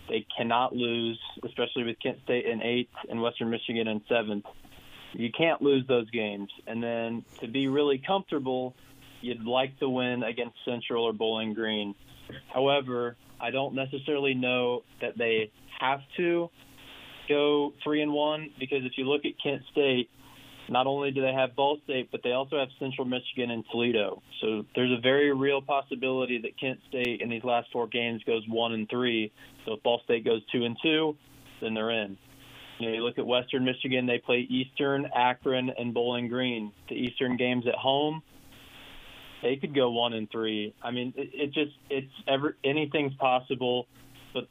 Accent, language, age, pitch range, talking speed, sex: American, English, 20-39, 120-135 Hz, 175 wpm, male